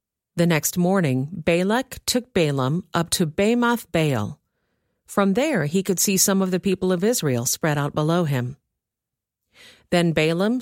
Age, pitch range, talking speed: 40-59, 145-200 Hz, 155 wpm